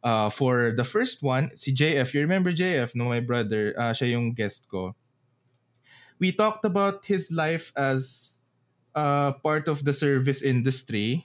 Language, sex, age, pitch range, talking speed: English, male, 20-39, 120-160 Hz, 160 wpm